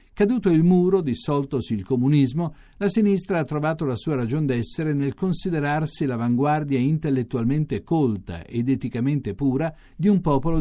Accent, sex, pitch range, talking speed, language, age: native, male, 120-170 Hz, 140 wpm, Italian, 50-69